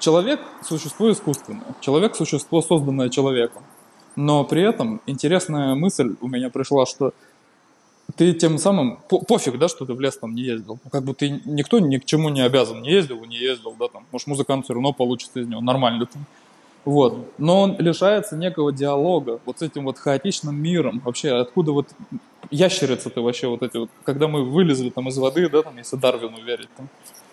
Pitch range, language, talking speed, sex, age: 130-165 Hz, Russian, 185 wpm, male, 20-39